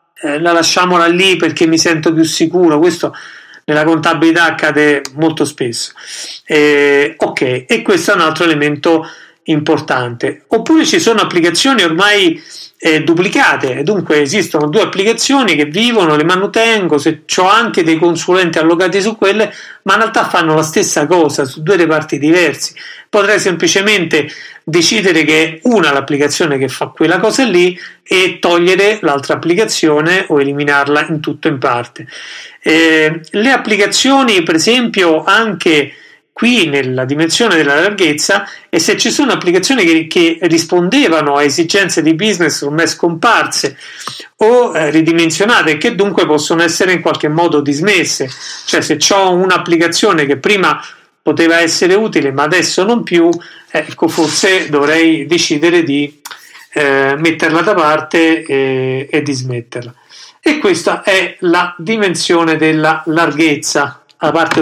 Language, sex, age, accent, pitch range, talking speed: Italian, male, 40-59, native, 155-200 Hz, 140 wpm